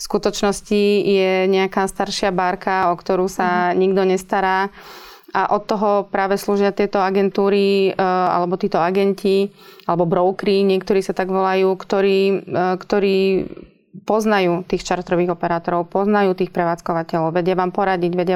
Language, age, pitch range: Slovak, 20-39, 180-195 Hz